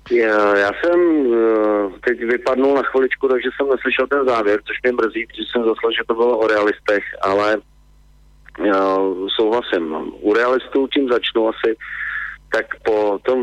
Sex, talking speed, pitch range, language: male, 150 wpm, 100-125 Hz, Slovak